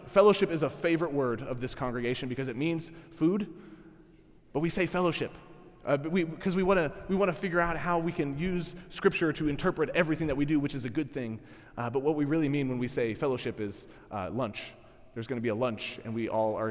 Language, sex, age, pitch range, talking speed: English, male, 20-39, 125-170 Hz, 230 wpm